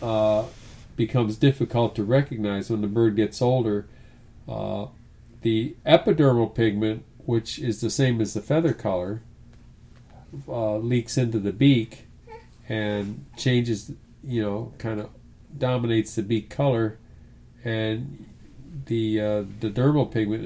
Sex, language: male, English